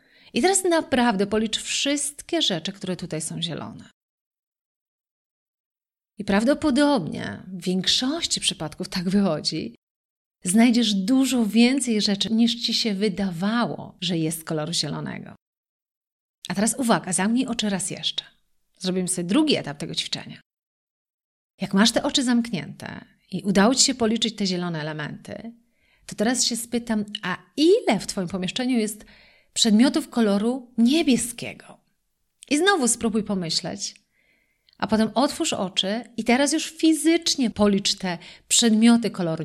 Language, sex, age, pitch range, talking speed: Polish, female, 30-49, 195-255 Hz, 130 wpm